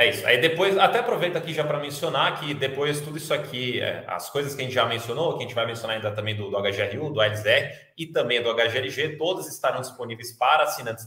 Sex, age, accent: male, 20-39, Brazilian